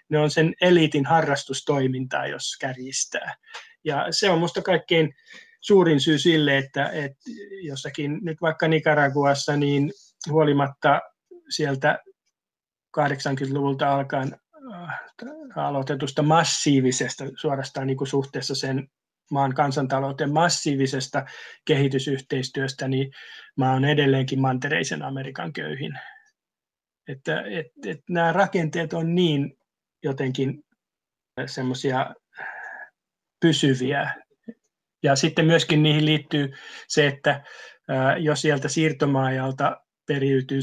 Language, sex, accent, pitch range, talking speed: Finnish, male, native, 135-165 Hz, 95 wpm